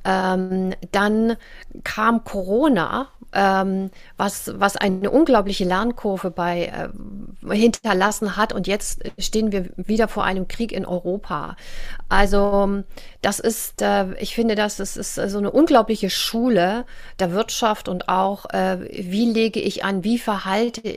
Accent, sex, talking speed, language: German, female, 140 wpm, German